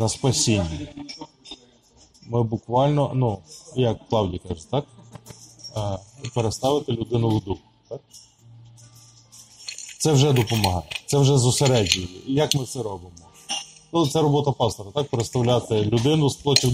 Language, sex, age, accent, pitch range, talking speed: Ukrainian, male, 20-39, native, 115-140 Hz, 120 wpm